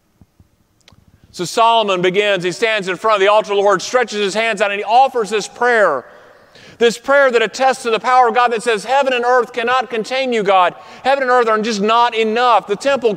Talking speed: 225 wpm